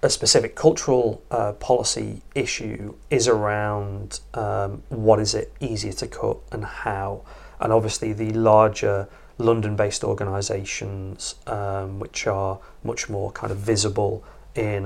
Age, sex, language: 30-49, male, English